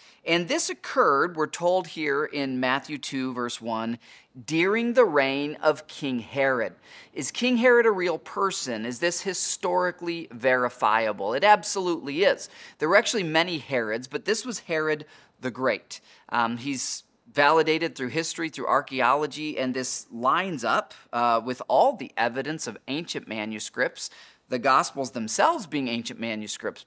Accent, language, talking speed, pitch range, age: American, English, 145 wpm, 125-170 Hz, 30-49